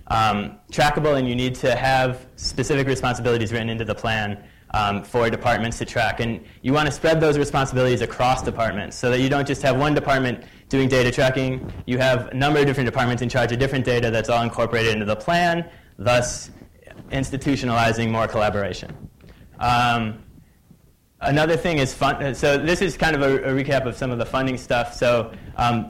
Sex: male